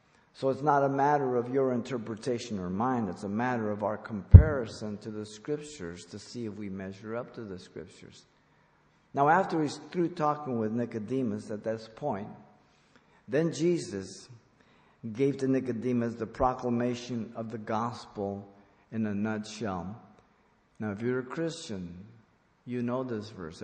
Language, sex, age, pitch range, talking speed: English, male, 50-69, 105-130 Hz, 150 wpm